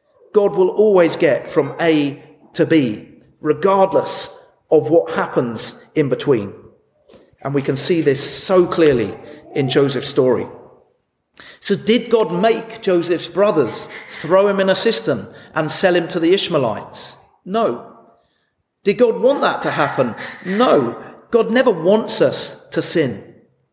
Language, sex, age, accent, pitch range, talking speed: English, male, 40-59, British, 155-225 Hz, 140 wpm